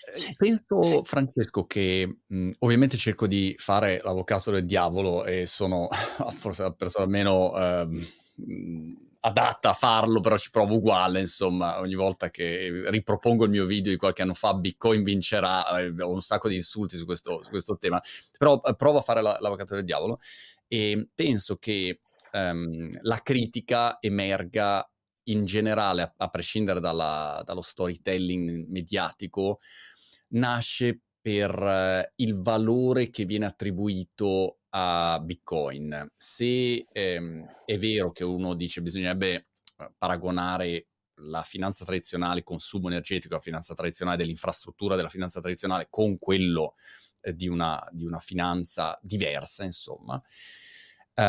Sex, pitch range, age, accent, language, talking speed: male, 90-110 Hz, 30-49, native, Italian, 135 wpm